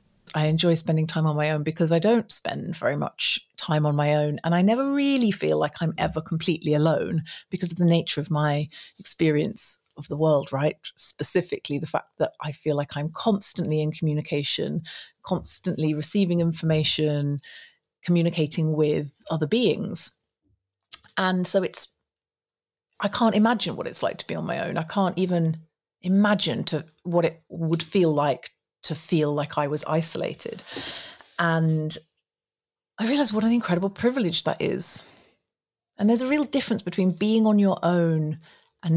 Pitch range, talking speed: 155-190 Hz, 160 wpm